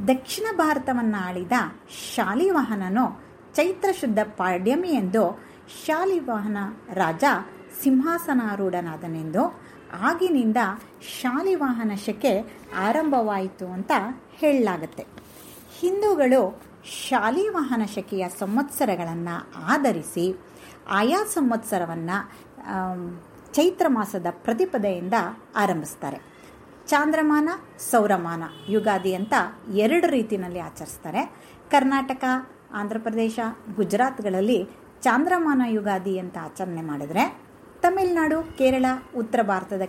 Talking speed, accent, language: 70 wpm, native, Kannada